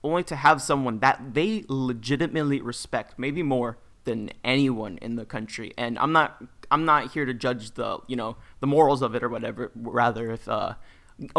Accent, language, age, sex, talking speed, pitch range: American, English, 20-39, male, 185 wpm, 125-160 Hz